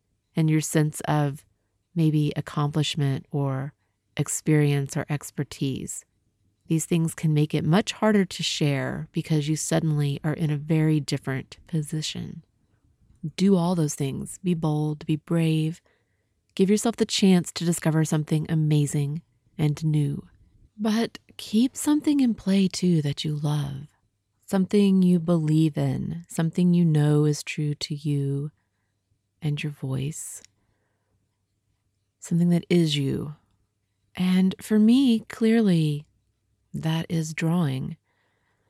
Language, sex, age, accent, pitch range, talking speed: English, female, 30-49, American, 130-170 Hz, 125 wpm